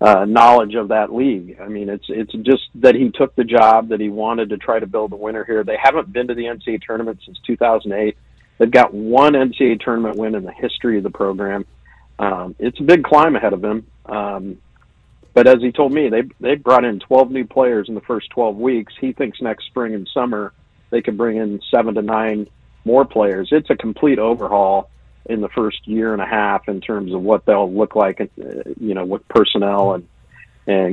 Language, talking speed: English, 215 wpm